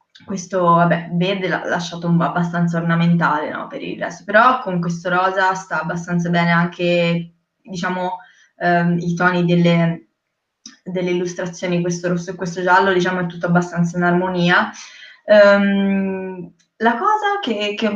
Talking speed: 140 wpm